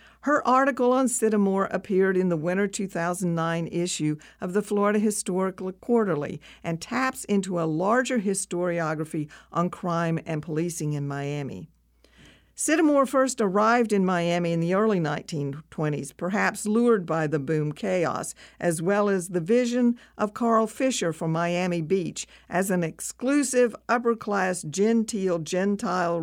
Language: English